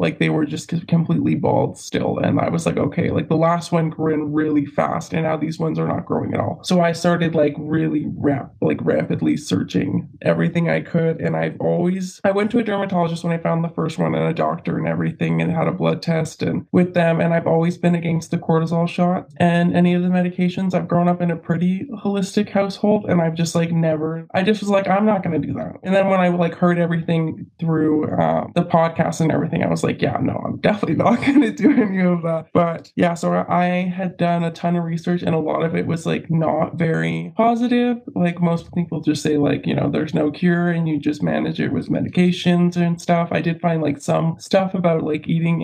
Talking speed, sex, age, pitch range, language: 235 wpm, male, 20-39, 160-175 Hz, English